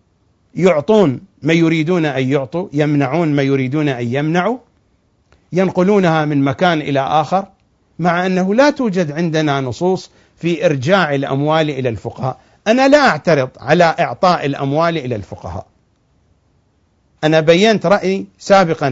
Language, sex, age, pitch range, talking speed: English, male, 50-69, 135-195 Hz, 120 wpm